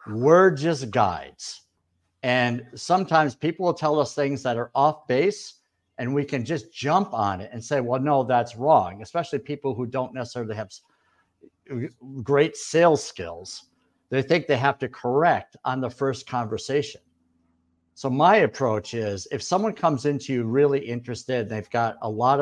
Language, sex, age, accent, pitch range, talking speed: English, male, 50-69, American, 120-155 Hz, 165 wpm